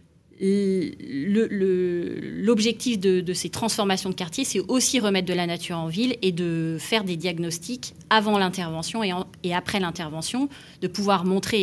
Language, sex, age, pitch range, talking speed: French, female, 30-49, 170-205 Hz, 165 wpm